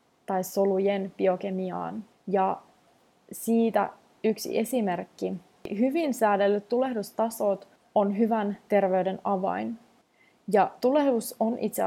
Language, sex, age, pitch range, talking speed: Finnish, female, 20-39, 185-225 Hz, 90 wpm